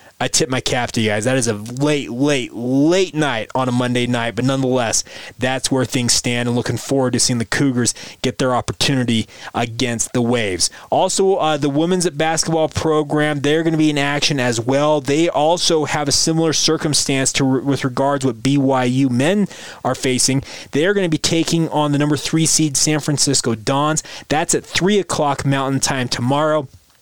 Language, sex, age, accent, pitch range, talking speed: English, male, 20-39, American, 130-160 Hz, 190 wpm